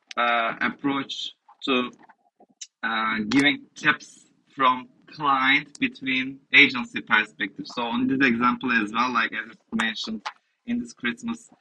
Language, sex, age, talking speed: English, male, 30-49, 125 wpm